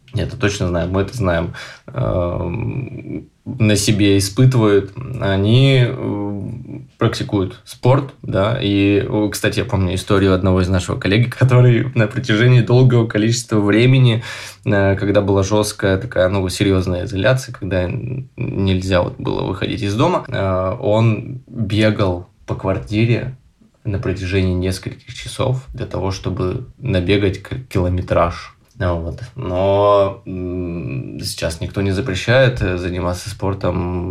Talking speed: 115 wpm